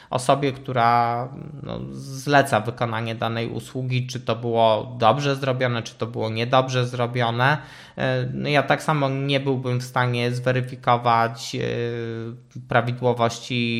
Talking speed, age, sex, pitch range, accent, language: 110 wpm, 20-39, male, 120-160 Hz, native, Polish